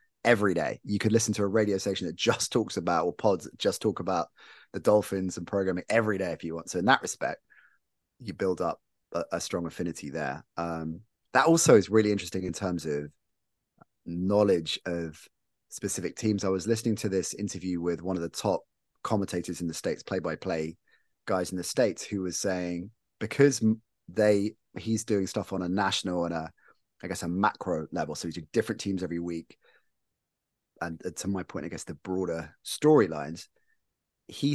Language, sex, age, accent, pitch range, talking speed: English, male, 30-49, British, 85-105 Hz, 190 wpm